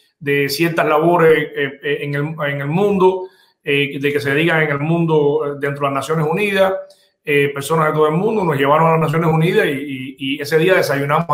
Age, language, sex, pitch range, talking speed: 30-49, English, male, 145-165 Hz, 210 wpm